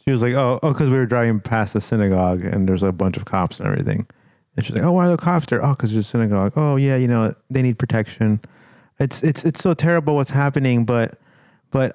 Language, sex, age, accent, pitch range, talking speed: English, male, 30-49, American, 105-140 Hz, 250 wpm